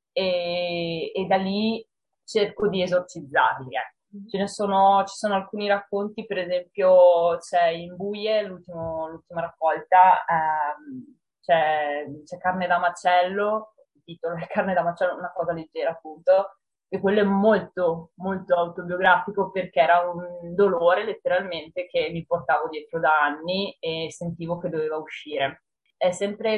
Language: Italian